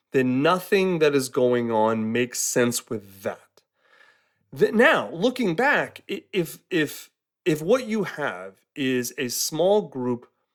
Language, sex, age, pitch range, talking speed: English, male, 30-49, 120-185 Hz, 130 wpm